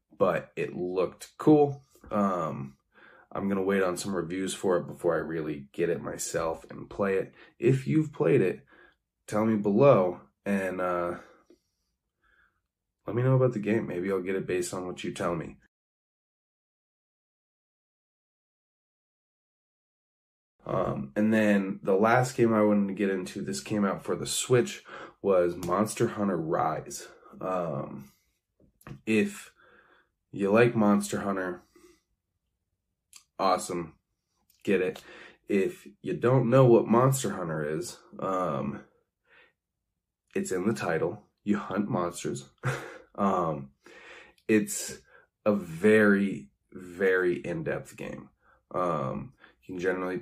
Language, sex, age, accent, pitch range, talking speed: English, male, 20-39, American, 90-110 Hz, 125 wpm